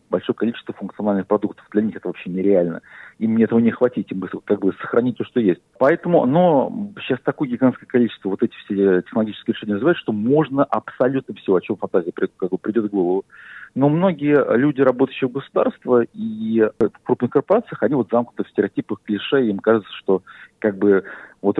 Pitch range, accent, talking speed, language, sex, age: 105-135 Hz, native, 185 wpm, Russian, male, 40-59